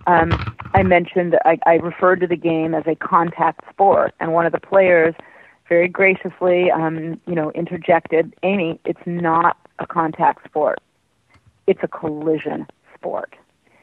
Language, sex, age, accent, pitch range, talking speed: English, female, 40-59, American, 165-190 Hz, 140 wpm